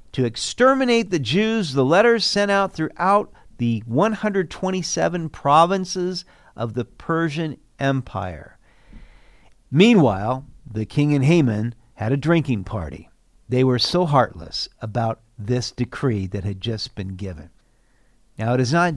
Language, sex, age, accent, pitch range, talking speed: English, male, 50-69, American, 120-185 Hz, 130 wpm